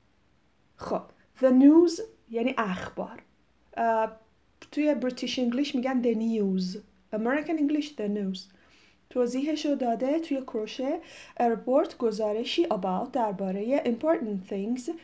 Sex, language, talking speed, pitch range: female, Persian, 105 wpm, 205-270 Hz